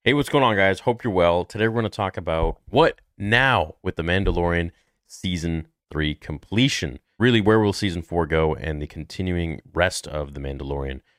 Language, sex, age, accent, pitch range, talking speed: English, male, 30-49, American, 80-110 Hz, 190 wpm